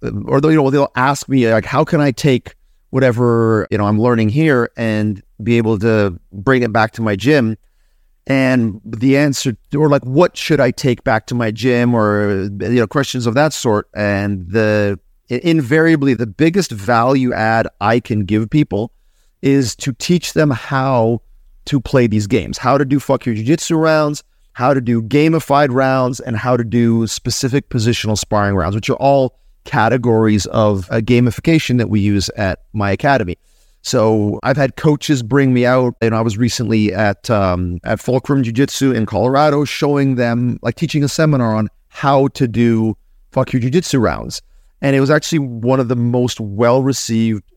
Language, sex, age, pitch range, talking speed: English, male, 30-49, 110-135 Hz, 175 wpm